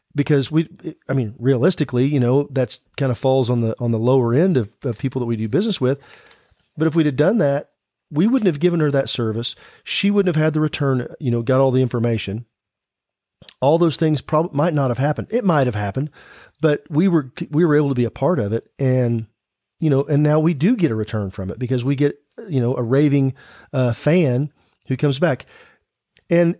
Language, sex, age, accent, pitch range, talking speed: English, male, 40-59, American, 120-155 Hz, 220 wpm